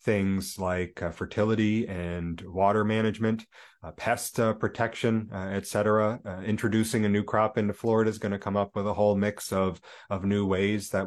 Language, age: English, 30-49